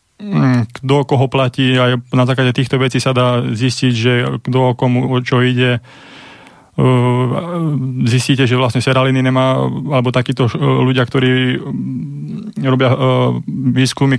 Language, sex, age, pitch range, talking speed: Slovak, male, 20-39, 120-130 Hz, 120 wpm